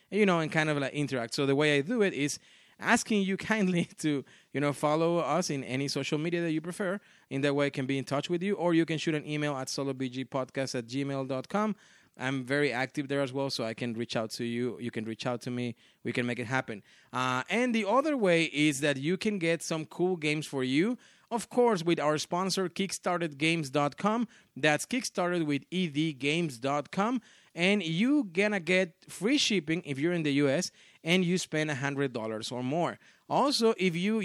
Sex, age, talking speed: male, 30-49, 210 wpm